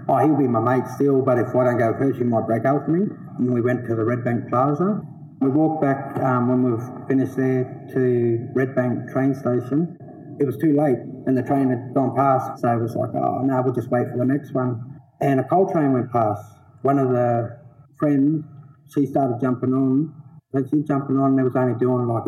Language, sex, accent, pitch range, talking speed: English, male, Australian, 125-140 Hz, 225 wpm